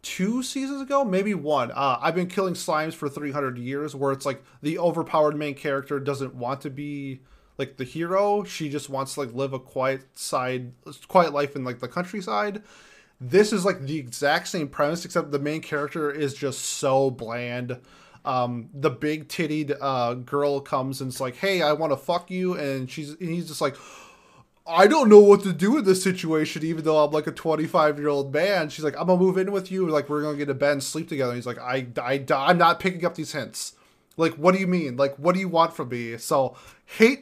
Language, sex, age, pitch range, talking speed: English, male, 20-39, 135-170 Hz, 225 wpm